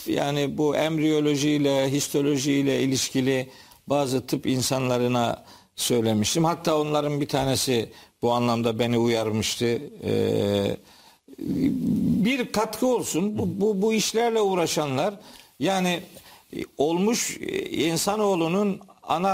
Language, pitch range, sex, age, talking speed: Turkish, 140-185 Hz, male, 50-69, 90 wpm